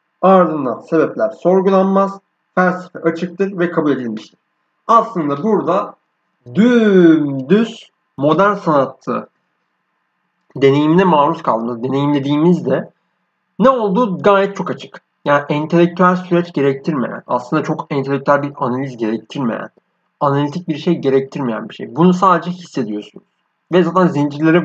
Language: Turkish